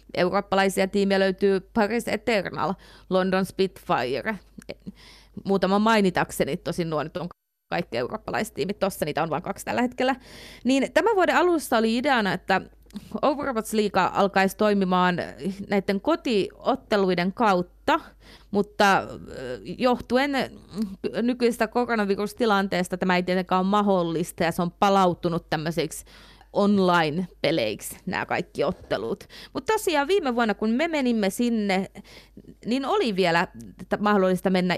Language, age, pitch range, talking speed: Finnish, 30-49, 185-235 Hz, 115 wpm